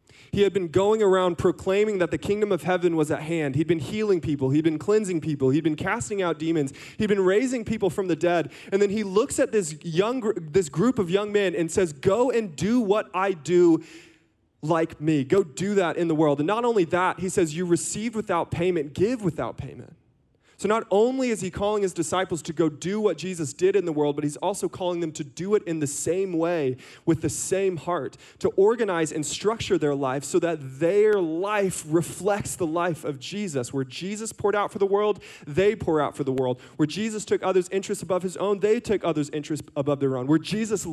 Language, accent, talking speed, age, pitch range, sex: English, American, 225 wpm, 20-39, 155-205 Hz, male